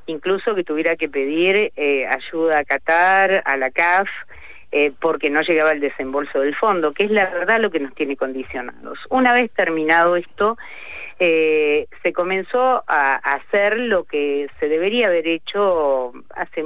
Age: 50-69